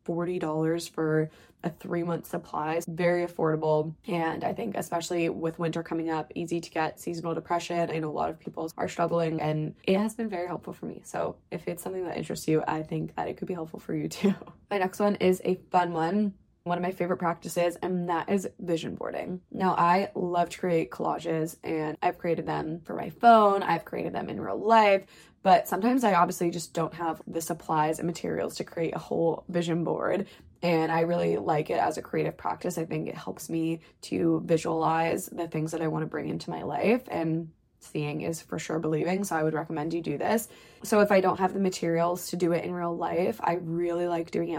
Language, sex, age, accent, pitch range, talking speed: English, female, 20-39, American, 165-185 Hz, 220 wpm